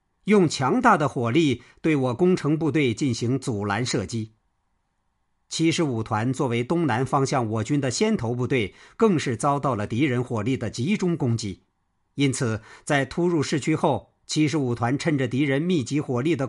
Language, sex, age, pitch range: Chinese, male, 50-69, 110-160 Hz